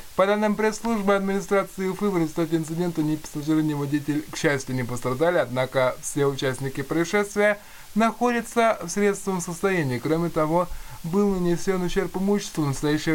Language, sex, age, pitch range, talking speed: Russian, male, 20-39, 150-190 Hz, 130 wpm